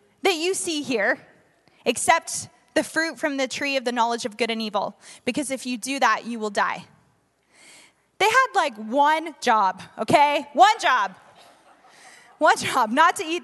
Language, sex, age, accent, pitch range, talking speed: English, female, 20-39, American, 225-280 Hz, 170 wpm